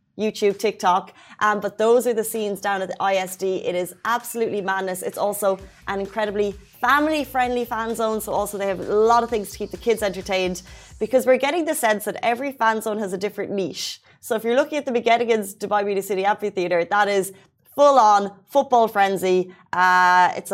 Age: 30-49